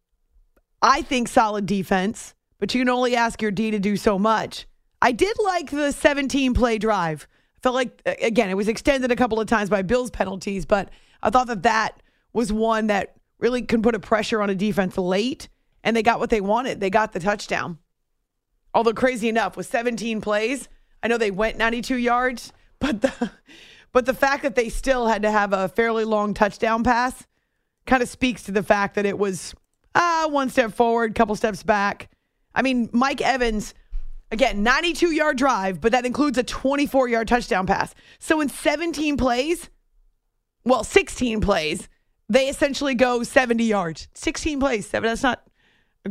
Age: 30-49